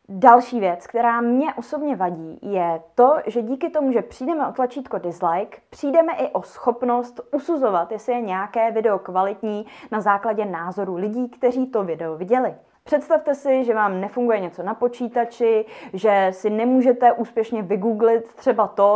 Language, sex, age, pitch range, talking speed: Czech, female, 20-39, 200-255 Hz, 155 wpm